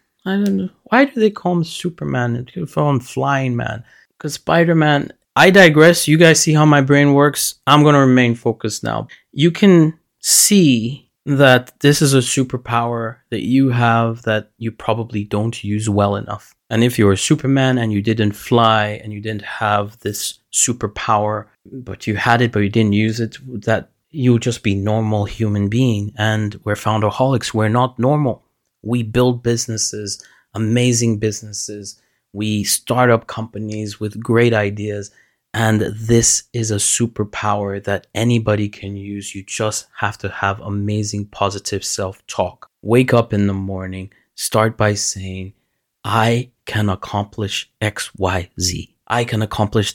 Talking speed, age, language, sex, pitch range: 160 wpm, 30-49, English, male, 105-125 Hz